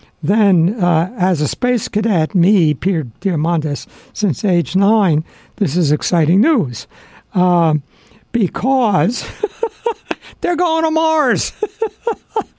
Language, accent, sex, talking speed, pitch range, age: English, American, male, 105 wpm, 170-225 Hz, 60-79